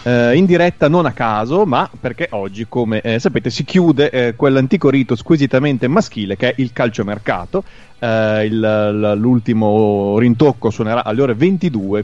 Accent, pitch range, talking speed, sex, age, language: native, 105-125 Hz, 145 wpm, male, 30-49, Italian